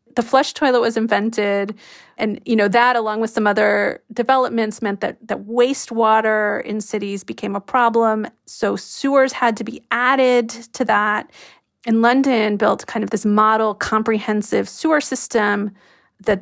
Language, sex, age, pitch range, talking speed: English, female, 30-49, 205-245 Hz, 155 wpm